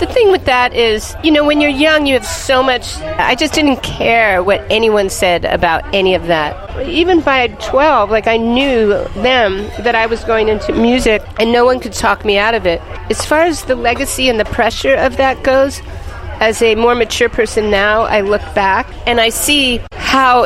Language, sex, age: English, female, 40-59